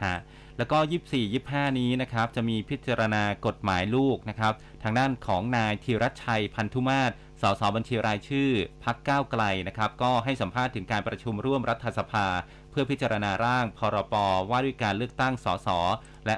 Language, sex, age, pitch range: Thai, male, 30-49, 105-135 Hz